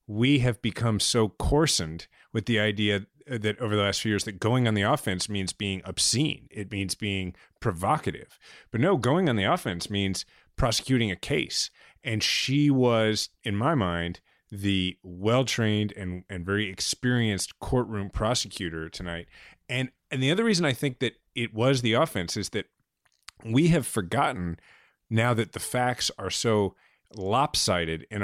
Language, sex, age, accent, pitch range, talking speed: English, male, 30-49, American, 95-125 Hz, 160 wpm